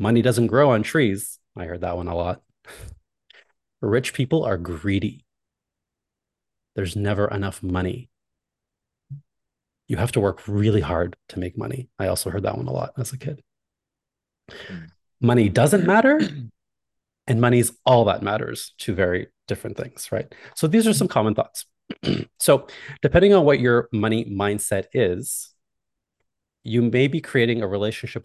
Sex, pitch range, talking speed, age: male, 95-125 Hz, 150 wpm, 30-49